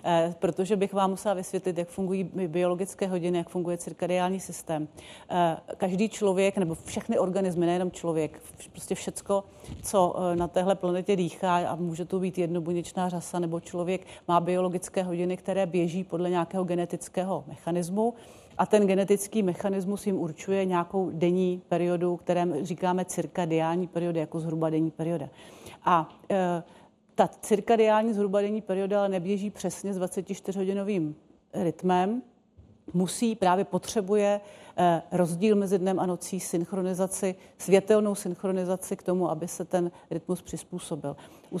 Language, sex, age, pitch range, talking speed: Czech, female, 40-59, 175-195 Hz, 130 wpm